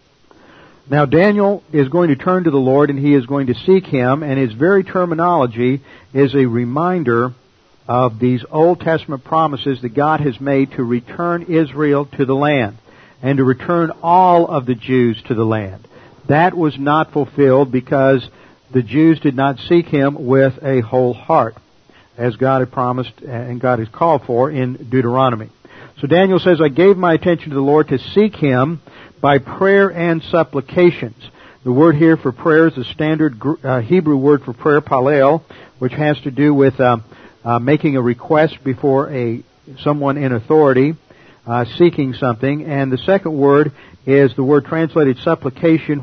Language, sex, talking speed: English, male, 170 wpm